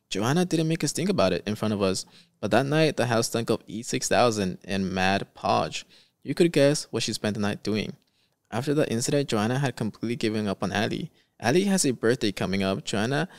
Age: 20-39